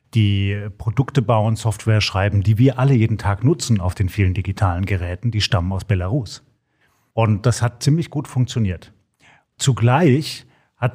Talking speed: 155 wpm